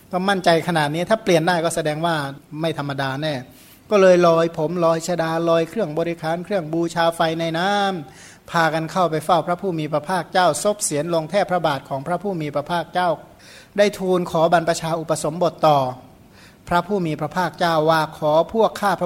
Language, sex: Thai, male